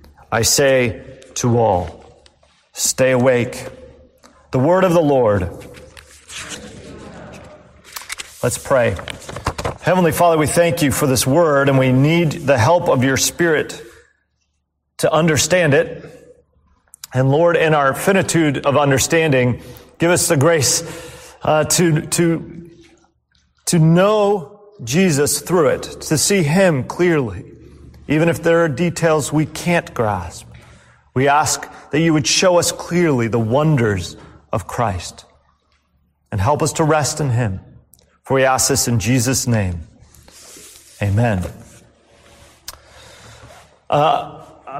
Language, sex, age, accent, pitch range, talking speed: English, male, 40-59, American, 125-170 Hz, 120 wpm